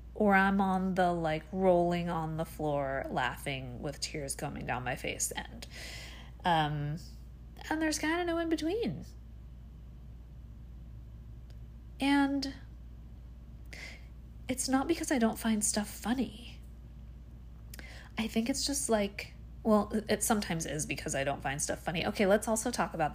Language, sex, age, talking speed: English, female, 30-49, 135 wpm